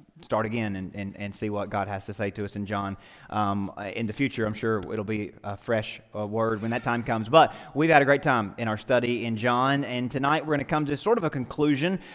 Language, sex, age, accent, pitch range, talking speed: English, male, 30-49, American, 110-135 Hz, 260 wpm